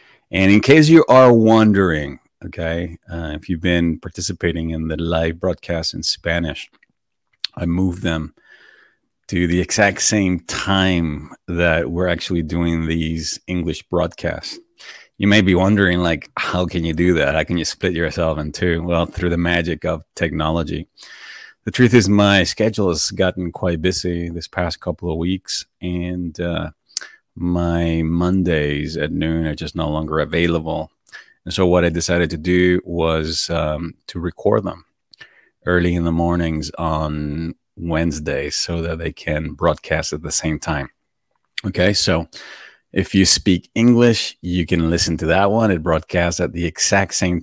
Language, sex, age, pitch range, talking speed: English, male, 30-49, 80-90 Hz, 160 wpm